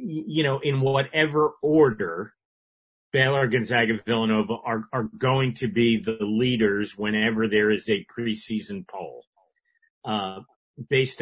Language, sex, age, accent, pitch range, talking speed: English, male, 40-59, American, 110-130 Hz, 125 wpm